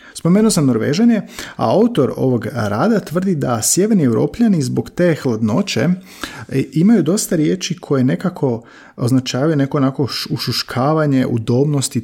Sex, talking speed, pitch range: male, 120 wpm, 115-155 Hz